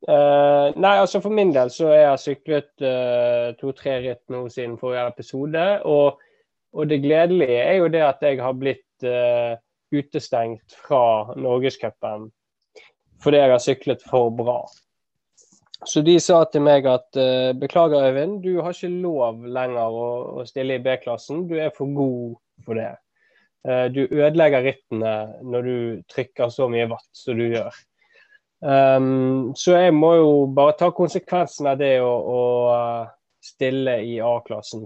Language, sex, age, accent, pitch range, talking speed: English, male, 20-39, Swedish, 120-150 Hz, 160 wpm